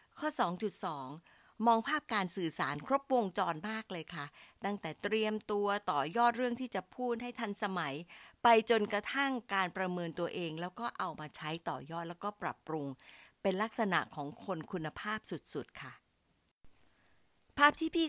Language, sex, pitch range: Thai, female, 165-230 Hz